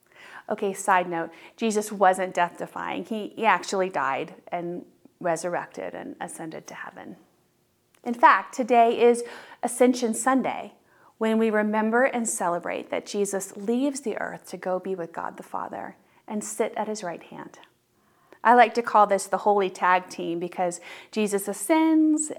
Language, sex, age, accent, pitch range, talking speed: English, female, 30-49, American, 185-245 Hz, 150 wpm